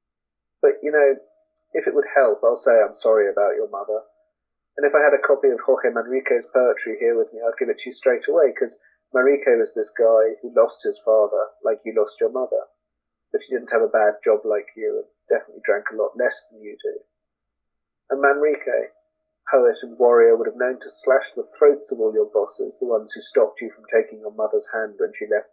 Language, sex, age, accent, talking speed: English, male, 40-59, British, 225 wpm